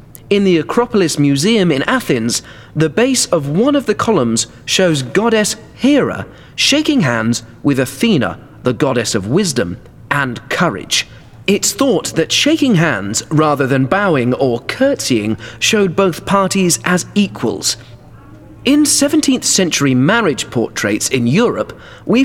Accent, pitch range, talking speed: British, 125-195 Hz, 130 wpm